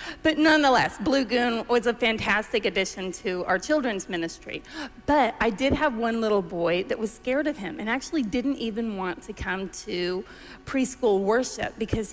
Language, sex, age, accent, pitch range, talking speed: English, female, 40-59, American, 210-270 Hz, 175 wpm